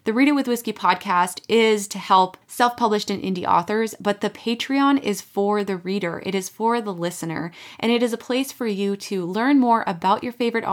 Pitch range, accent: 185-235 Hz, American